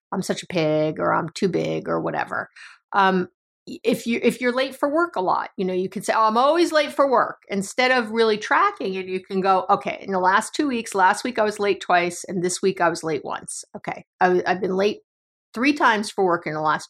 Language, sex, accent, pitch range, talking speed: English, female, American, 185-250 Hz, 255 wpm